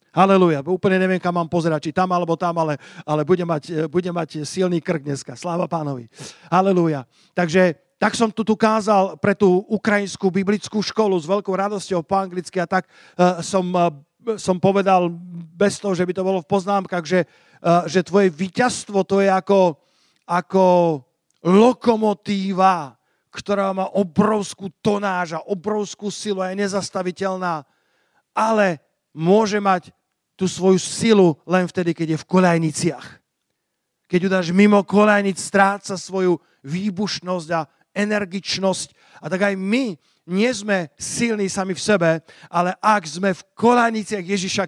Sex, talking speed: male, 140 wpm